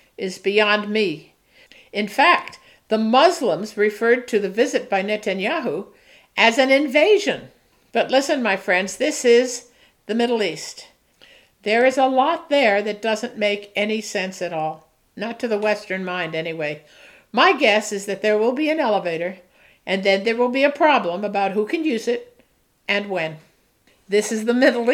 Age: 60-79